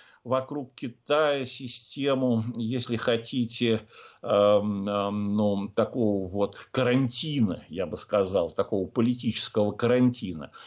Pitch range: 110-135 Hz